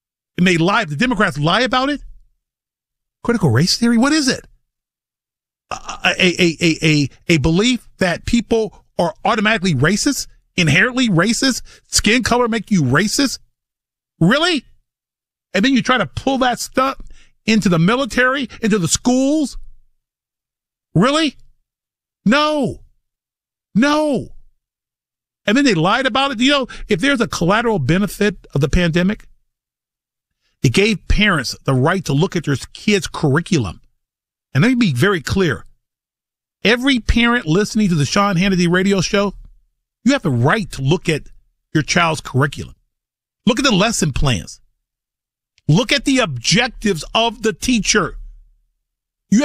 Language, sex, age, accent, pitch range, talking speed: English, male, 50-69, American, 155-240 Hz, 135 wpm